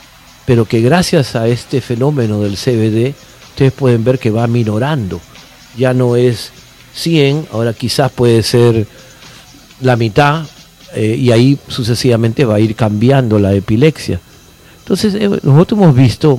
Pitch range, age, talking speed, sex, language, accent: 110-130 Hz, 50-69, 145 wpm, male, Spanish, Argentinian